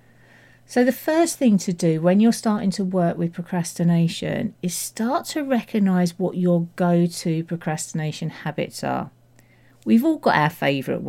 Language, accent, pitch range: English, British, 155-200 Hz